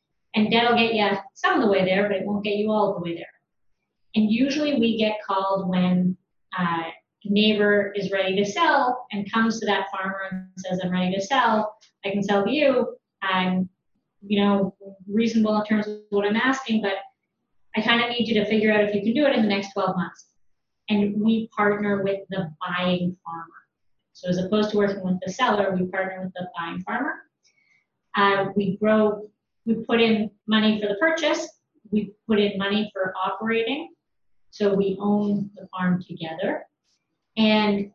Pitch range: 190-225 Hz